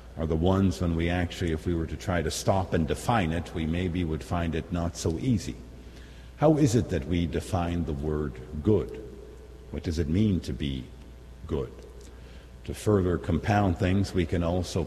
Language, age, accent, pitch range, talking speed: English, 50-69, American, 75-95 Hz, 190 wpm